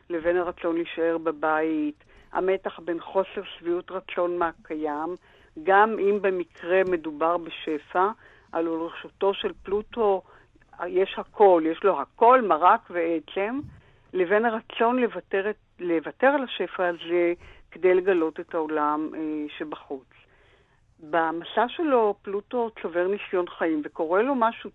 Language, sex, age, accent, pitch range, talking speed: Hebrew, female, 50-69, native, 165-205 Hz, 110 wpm